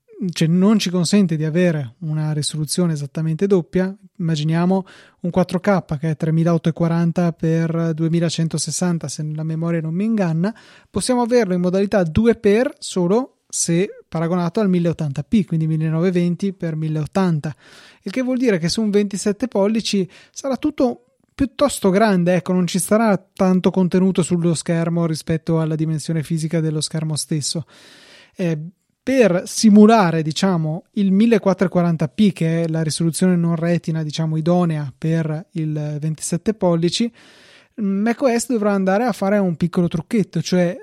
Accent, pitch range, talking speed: native, 165-200 Hz, 135 wpm